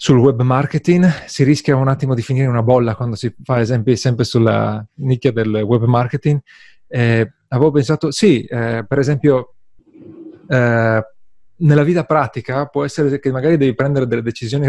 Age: 30-49